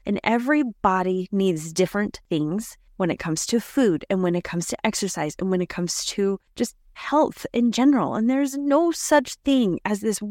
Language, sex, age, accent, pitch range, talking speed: English, female, 20-39, American, 195-260 Hz, 185 wpm